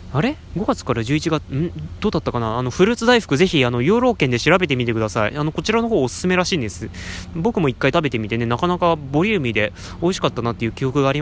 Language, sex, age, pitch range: Japanese, male, 20-39, 125-185 Hz